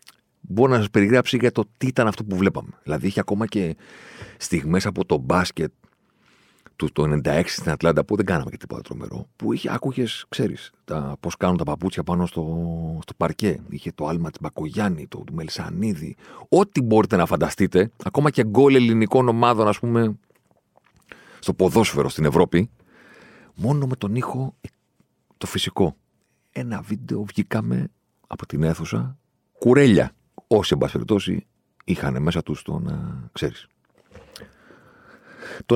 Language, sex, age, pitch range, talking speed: Greek, male, 40-59, 85-115 Hz, 145 wpm